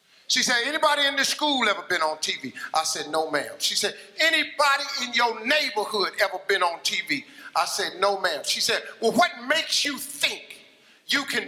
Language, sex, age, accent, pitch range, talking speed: English, male, 50-69, American, 195-255 Hz, 195 wpm